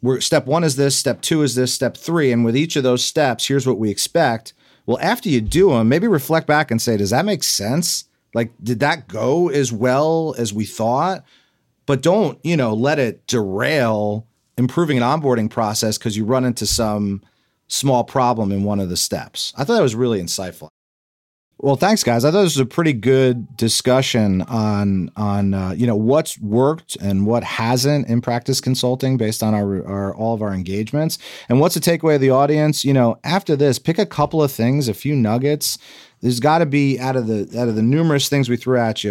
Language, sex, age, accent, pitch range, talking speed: English, male, 40-59, American, 110-145 Hz, 215 wpm